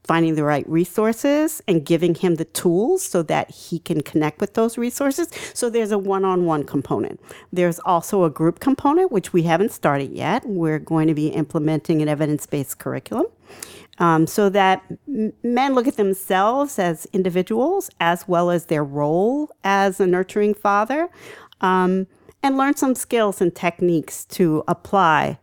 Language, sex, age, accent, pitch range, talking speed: English, female, 40-59, American, 155-205 Hz, 160 wpm